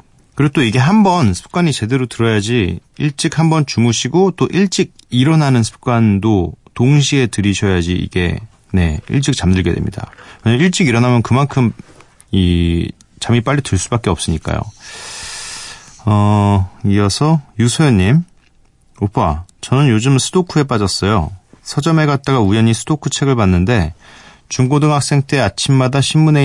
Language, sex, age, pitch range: Korean, male, 30-49, 100-145 Hz